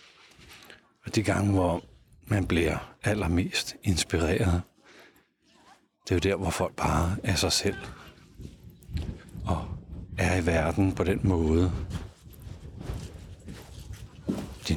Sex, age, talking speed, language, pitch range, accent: male, 60-79, 105 wpm, Danish, 90-110 Hz, native